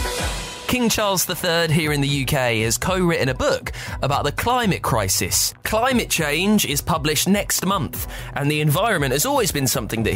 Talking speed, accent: 170 wpm, British